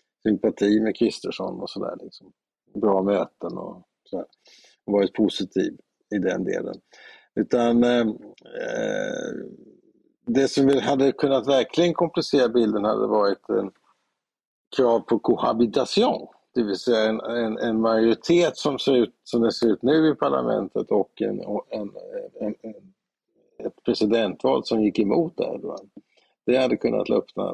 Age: 50-69